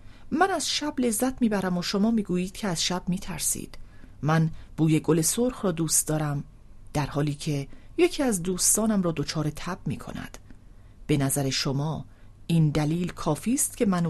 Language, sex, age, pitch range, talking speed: English, female, 40-59, 140-210 Hz, 175 wpm